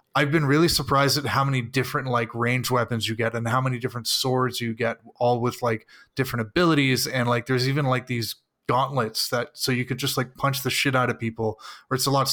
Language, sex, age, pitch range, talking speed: English, male, 20-39, 120-140 Hz, 235 wpm